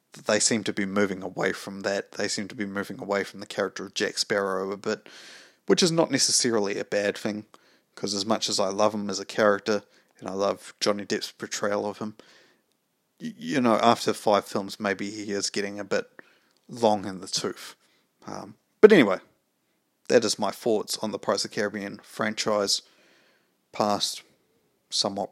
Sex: male